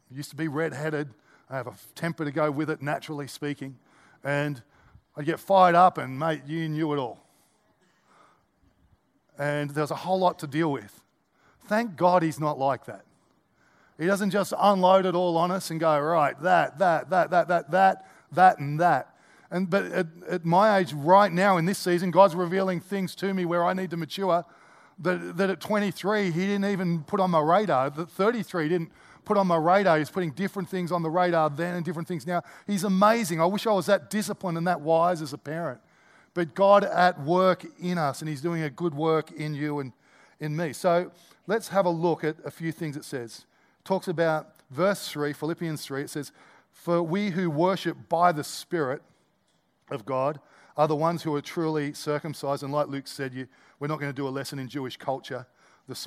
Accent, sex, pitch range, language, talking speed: Australian, male, 150-185 Hz, English, 205 wpm